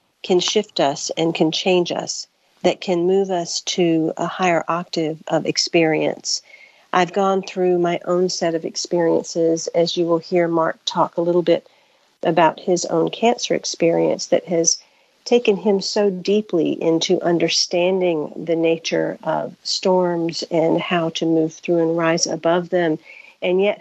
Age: 50-69